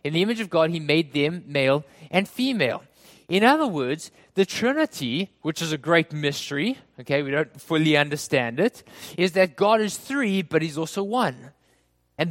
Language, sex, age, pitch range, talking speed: English, male, 20-39, 150-205 Hz, 180 wpm